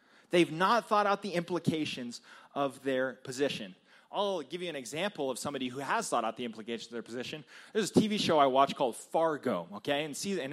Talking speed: 210 wpm